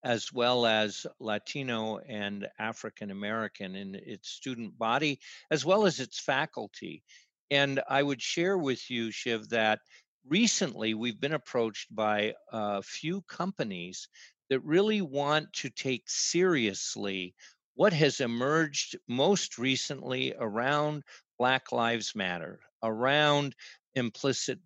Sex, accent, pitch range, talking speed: male, American, 110-145 Hz, 115 wpm